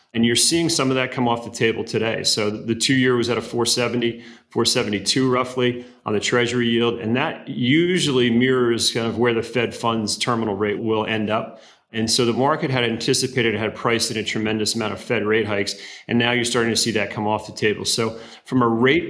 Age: 30-49